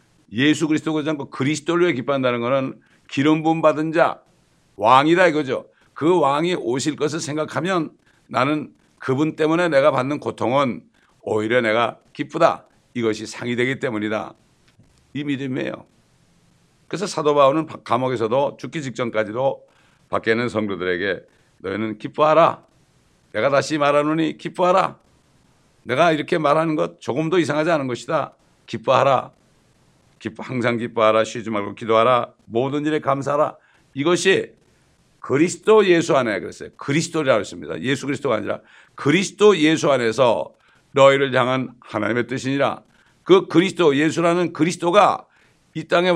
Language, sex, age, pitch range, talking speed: English, male, 60-79, 125-165 Hz, 110 wpm